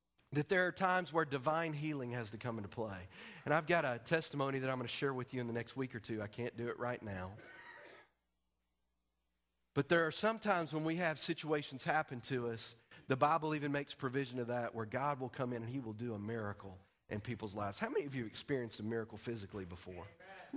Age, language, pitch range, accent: 40-59, English, 115-185 Hz, American